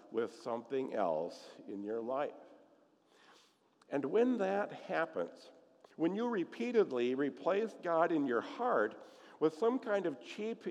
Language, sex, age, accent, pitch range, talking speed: English, male, 50-69, American, 135-205 Hz, 130 wpm